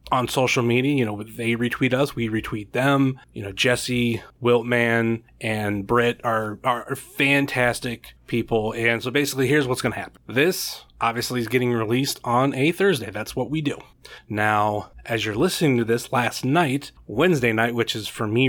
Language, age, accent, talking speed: English, 30-49, American, 175 wpm